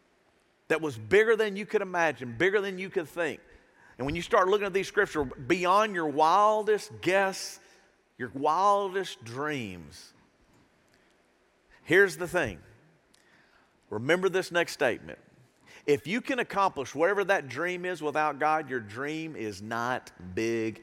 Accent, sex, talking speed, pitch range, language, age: American, male, 140 wpm, 140-205 Hz, English, 50-69